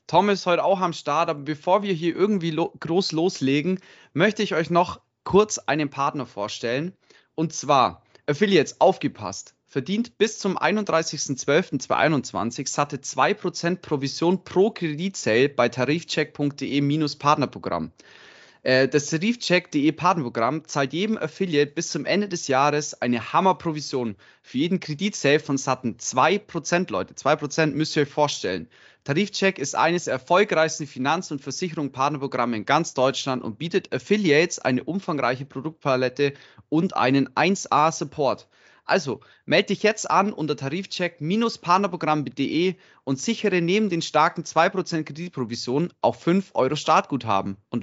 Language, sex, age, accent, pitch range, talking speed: German, male, 20-39, German, 140-180 Hz, 130 wpm